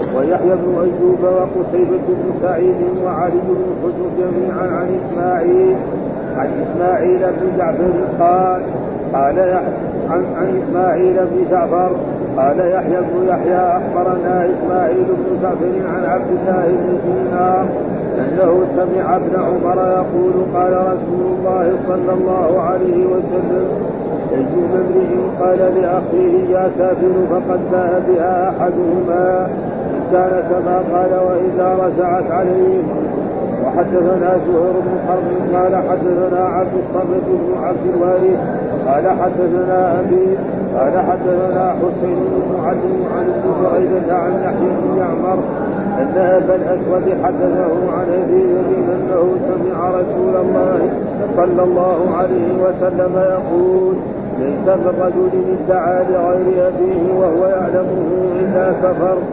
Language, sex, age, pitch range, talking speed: Arabic, male, 50-69, 180-185 Hz, 110 wpm